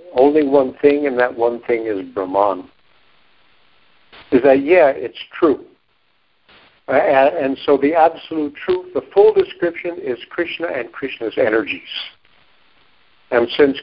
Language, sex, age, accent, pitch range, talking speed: English, male, 60-79, American, 115-165 Hz, 135 wpm